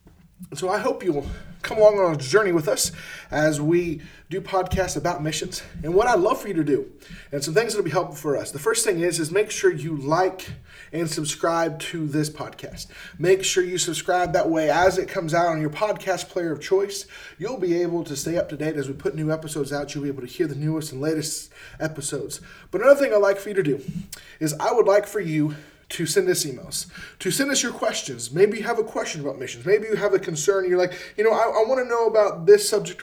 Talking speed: 245 wpm